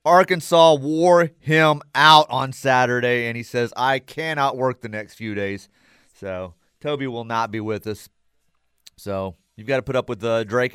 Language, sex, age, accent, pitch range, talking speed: English, male, 30-49, American, 100-150 Hz, 180 wpm